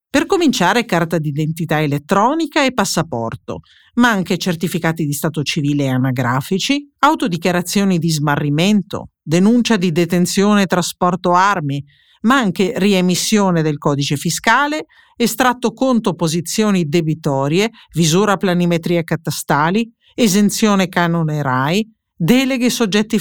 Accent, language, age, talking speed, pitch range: native, Italian, 50-69, 110 wpm, 165-220 Hz